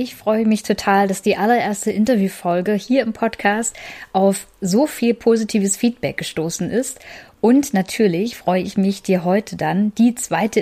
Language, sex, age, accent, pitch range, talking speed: German, female, 10-29, German, 185-225 Hz, 160 wpm